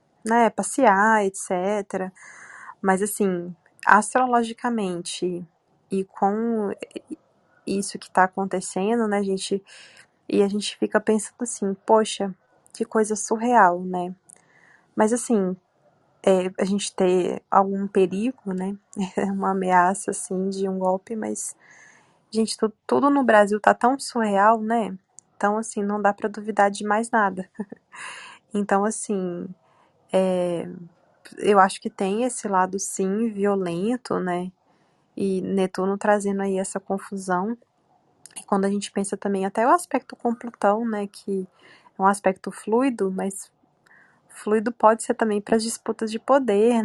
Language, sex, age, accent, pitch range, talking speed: Portuguese, female, 20-39, Brazilian, 190-220 Hz, 130 wpm